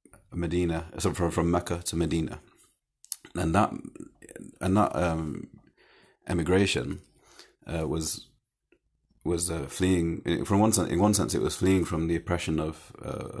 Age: 30-49